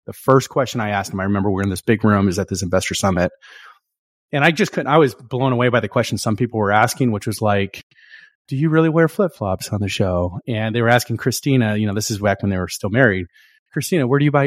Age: 30-49